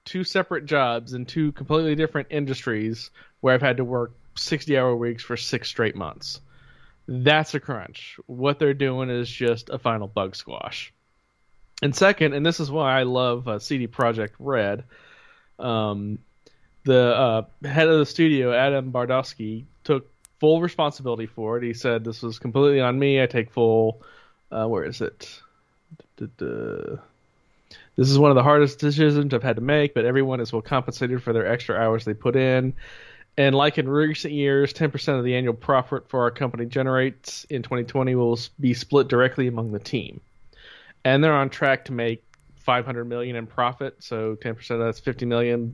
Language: English